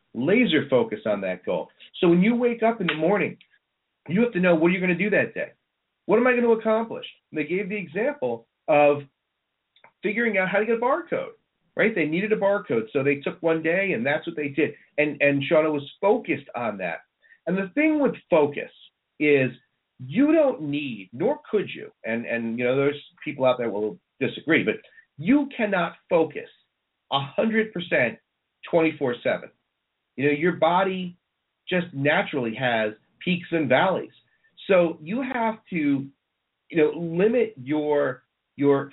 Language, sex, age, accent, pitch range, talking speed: English, male, 40-59, American, 145-205 Hz, 175 wpm